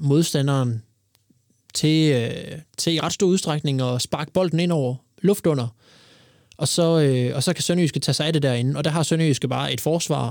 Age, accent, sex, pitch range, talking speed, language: 20-39, native, male, 125-150 Hz, 175 wpm, Danish